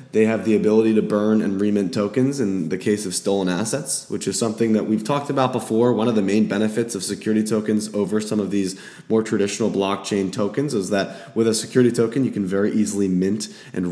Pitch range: 90-115 Hz